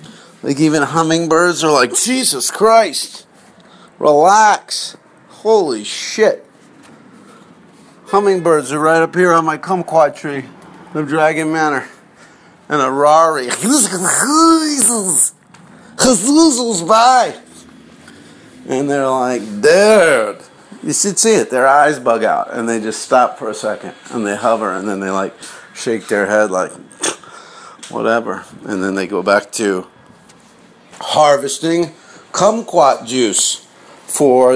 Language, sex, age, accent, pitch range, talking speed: English, male, 50-69, American, 150-230 Hz, 115 wpm